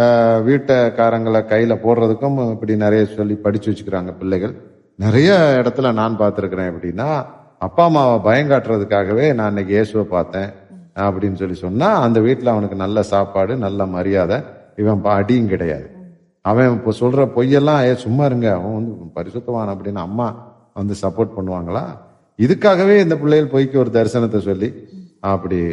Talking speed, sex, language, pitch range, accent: 95 wpm, male, Tamil, 95-125 Hz, native